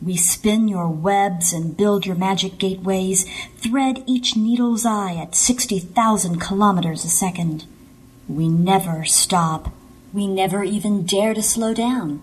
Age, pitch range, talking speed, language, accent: 40-59, 165-225 Hz, 135 wpm, English, American